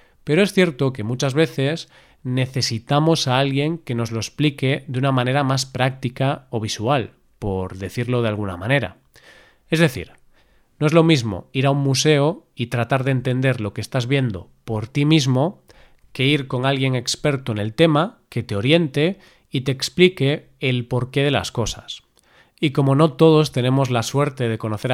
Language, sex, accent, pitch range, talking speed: Spanish, male, Spanish, 120-155 Hz, 180 wpm